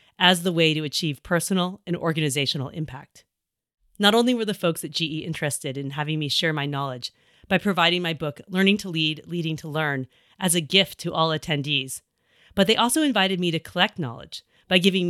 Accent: American